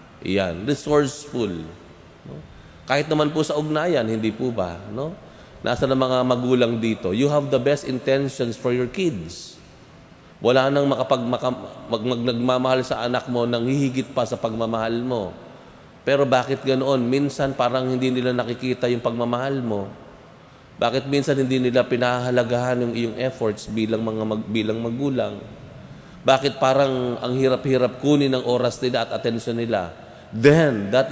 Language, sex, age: Filipino, male, 20-39